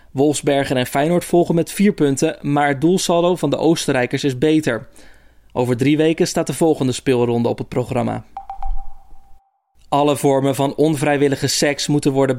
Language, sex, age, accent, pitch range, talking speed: Dutch, male, 20-39, Dutch, 135-165 Hz, 155 wpm